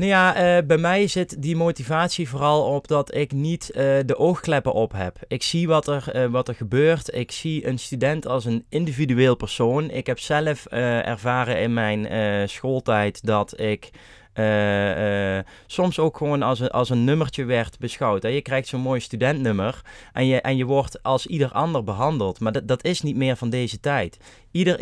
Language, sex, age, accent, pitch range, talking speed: Dutch, male, 20-39, Dutch, 115-140 Hz, 185 wpm